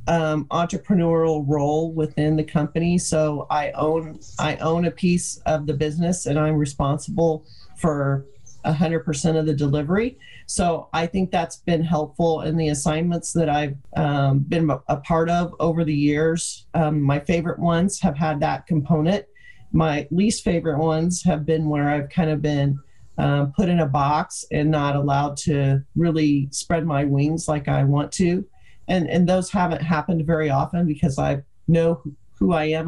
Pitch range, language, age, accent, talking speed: 145-170 Hz, English, 40-59, American, 170 wpm